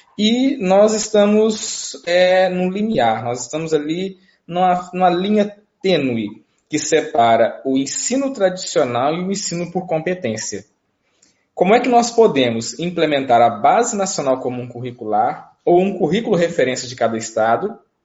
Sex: male